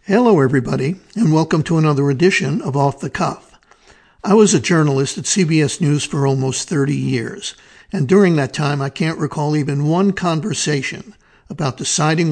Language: English